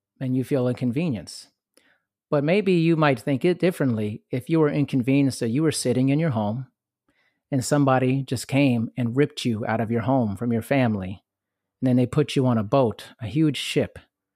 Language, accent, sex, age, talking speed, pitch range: English, American, male, 30-49, 195 wpm, 110-140 Hz